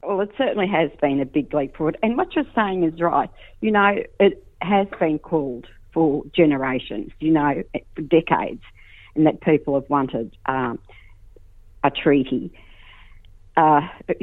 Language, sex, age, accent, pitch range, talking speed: English, female, 50-69, Australian, 140-185 Hz, 150 wpm